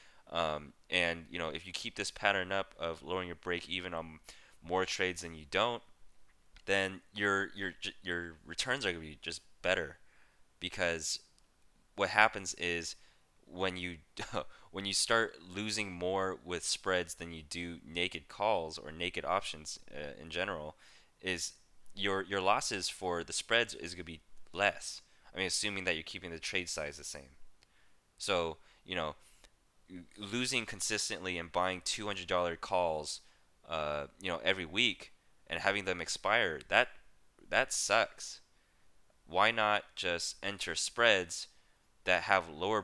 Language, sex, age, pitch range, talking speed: English, male, 20-39, 85-100 Hz, 150 wpm